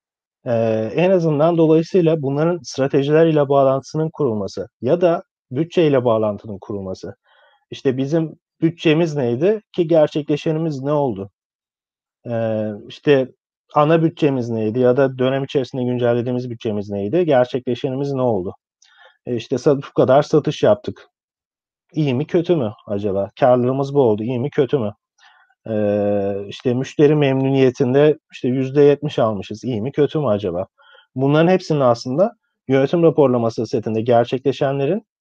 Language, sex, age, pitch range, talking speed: Turkish, male, 40-59, 120-160 Hz, 125 wpm